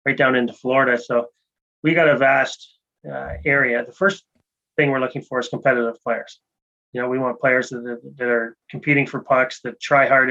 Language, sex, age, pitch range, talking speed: English, male, 30-49, 120-140 Hz, 200 wpm